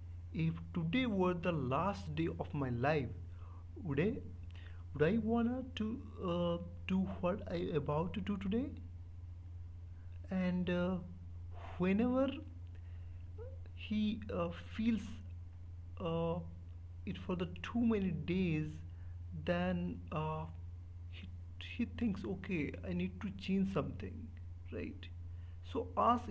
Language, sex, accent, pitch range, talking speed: English, male, Indian, 85-105 Hz, 115 wpm